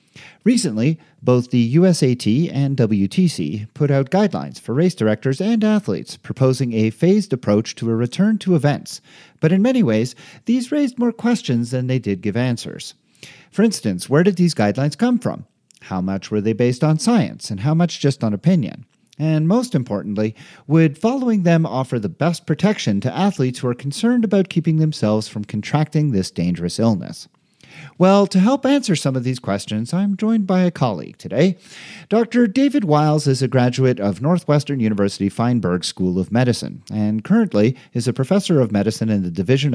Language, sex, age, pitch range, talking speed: English, male, 40-59, 110-185 Hz, 175 wpm